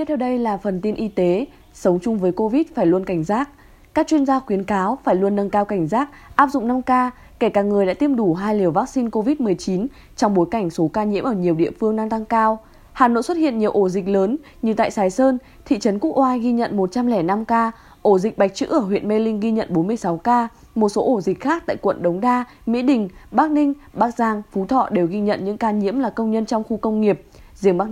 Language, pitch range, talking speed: Vietnamese, 195-255 Hz, 255 wpm